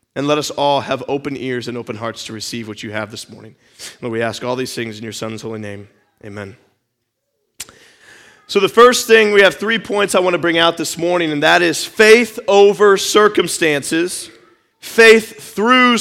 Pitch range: 150-225 Hz